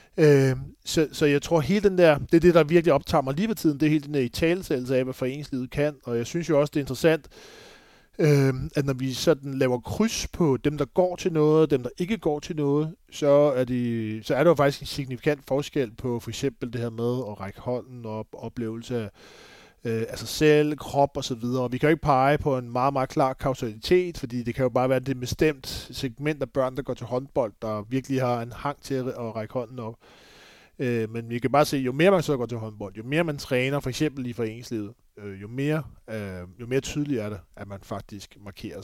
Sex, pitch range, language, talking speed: male, 120-150 Hz, Danish, 240 wpm